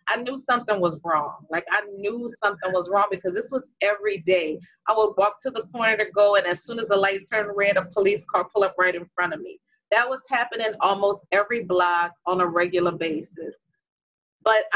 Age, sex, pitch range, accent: 30-49, female, 180-225 Hz, American